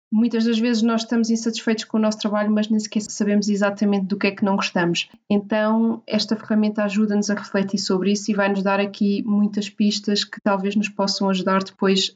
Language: Portuguese